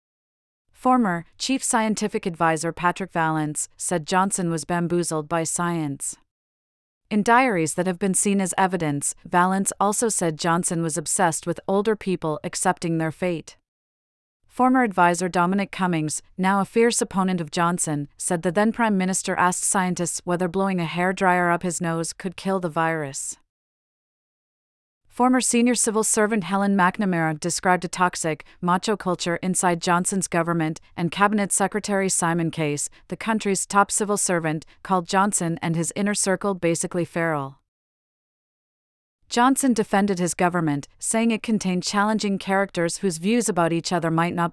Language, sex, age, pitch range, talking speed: English, female, 40-59, 165-195 Hz, 145 wpm